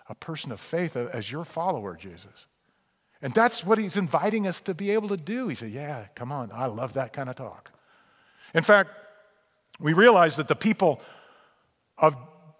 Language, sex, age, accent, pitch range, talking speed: English, male, 50-69, American, 140-185 Hz, 180 wpm